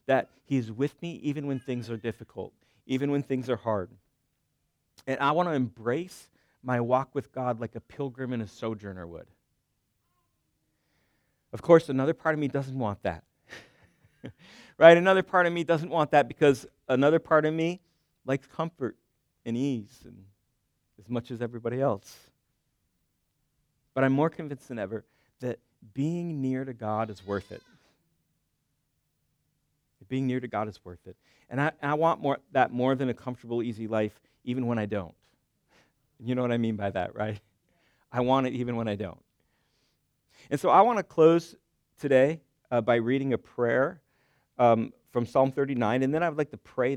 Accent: American